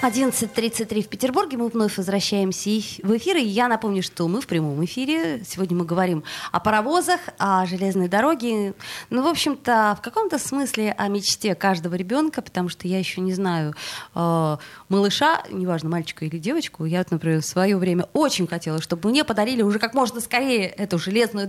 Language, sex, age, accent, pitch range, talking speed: Russian, female, 20-39, native, 170-225 Hz, 170 wpm